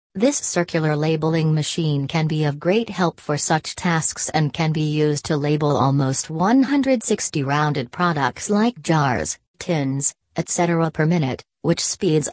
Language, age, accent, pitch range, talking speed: English, 40-59, American, 150-180 Hz, 145 wpm